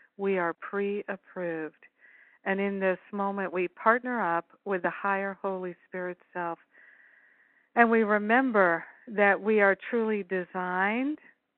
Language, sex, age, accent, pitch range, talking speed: English, female, 60-79, American, 180-210 Hz, 125 wpm